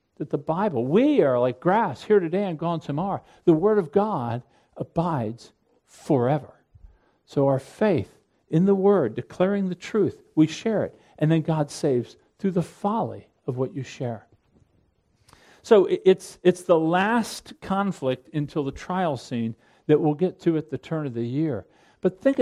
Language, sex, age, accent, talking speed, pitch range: English, male, 50-69, American, 170 wpm, 130-185 Hz